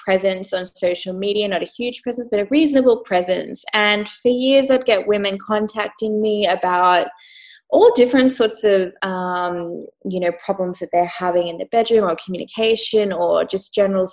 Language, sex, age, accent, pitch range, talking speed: English, female, 20-39, Australian, 185-230 Hz, 170 wpm